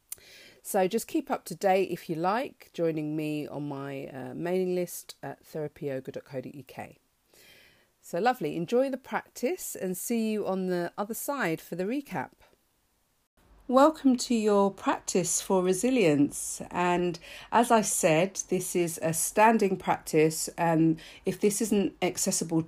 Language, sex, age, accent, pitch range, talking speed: English, female, 40-59, British, 150-190 Hz, 140 wpm